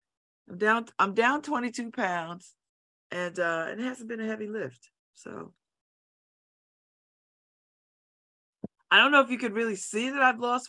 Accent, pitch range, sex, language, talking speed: American, 170-245 Hz, female, English, 145 wpm